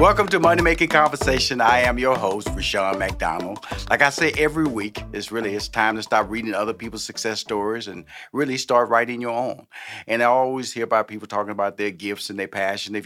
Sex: male